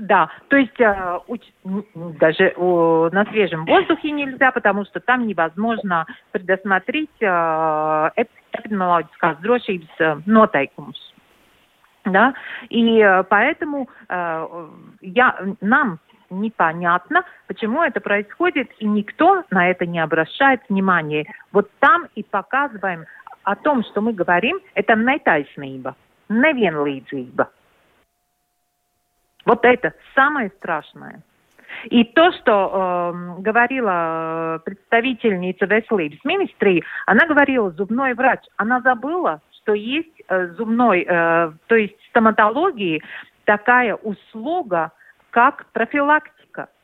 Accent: native